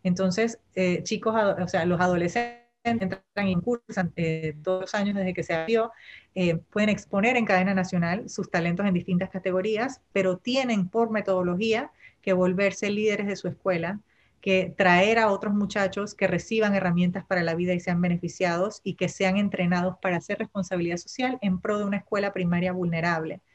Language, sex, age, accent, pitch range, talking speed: Spanish, female, 30-49, American, 180-205 Hz, 170 wpm